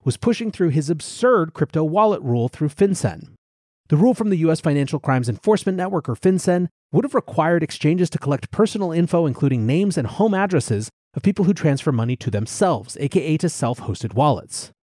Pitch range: 125-180 Hz